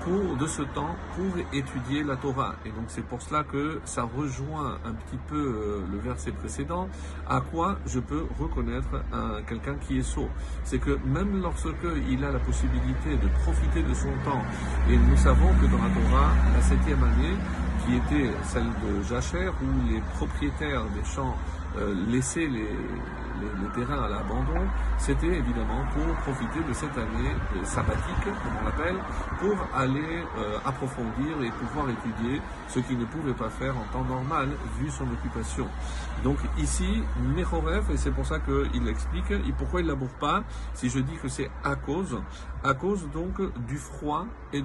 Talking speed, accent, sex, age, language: 175 wpm, French, male, 50-69, French